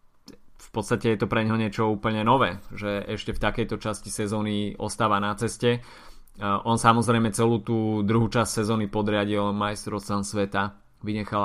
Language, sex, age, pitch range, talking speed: Slovak, male, 20-39, 105-115 Hz, 150 wpm